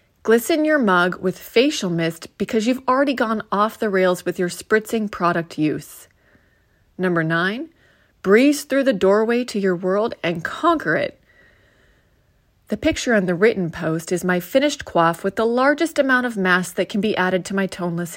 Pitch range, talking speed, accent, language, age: 175-230 Hz, 175 wpm, American, English, 30-49